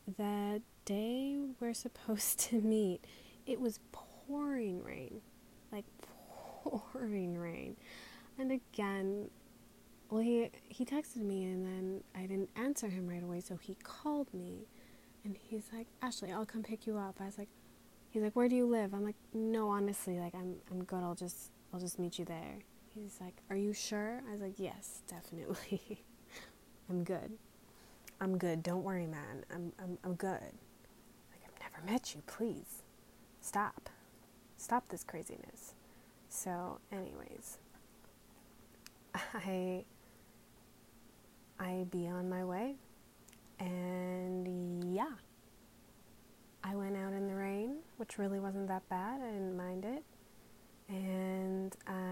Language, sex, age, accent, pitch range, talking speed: English, female, 20-39, American, 185-220 Hz, 140 wpm